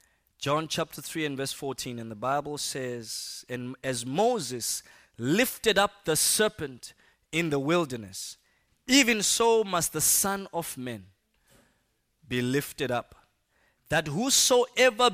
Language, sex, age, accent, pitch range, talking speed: English, male, 20-39, South African, 125-180 Hz, 125 wpm